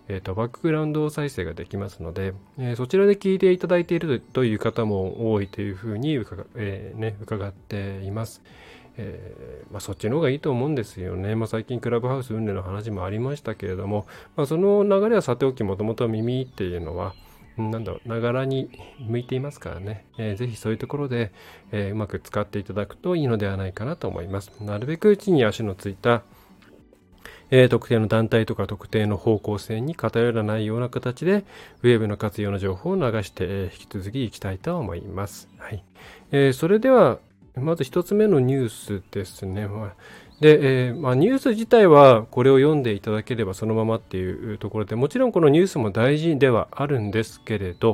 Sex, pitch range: male, 100-135 Hz